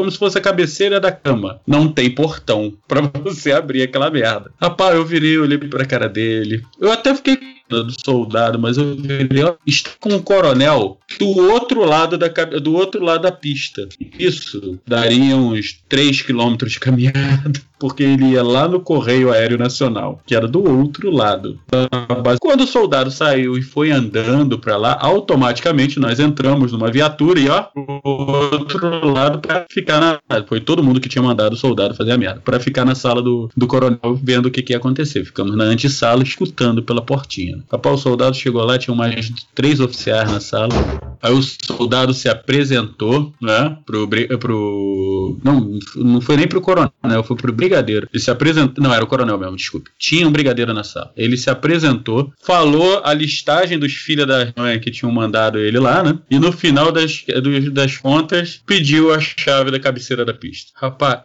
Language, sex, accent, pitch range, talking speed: Portuguese, male, Brazilian, 120-150 Hz, 185 wpm